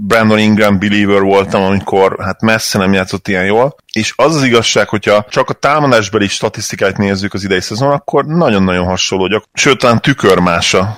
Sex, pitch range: male, 90-110 Hz